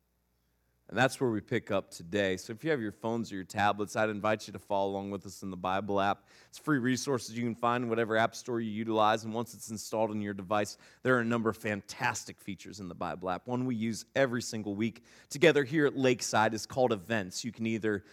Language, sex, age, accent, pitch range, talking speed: English, male, 30-49, American, 110-140 Hz, 245 wpm